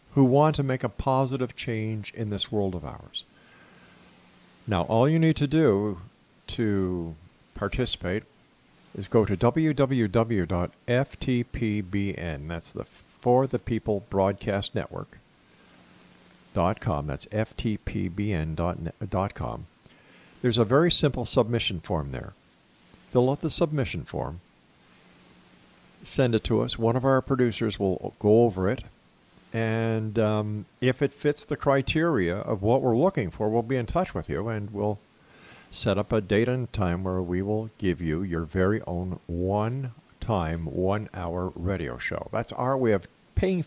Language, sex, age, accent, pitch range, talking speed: English, male, 50-69, American, 95-130 Hz, 135 wpm